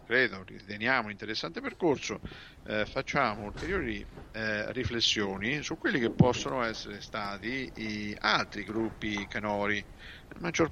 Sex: male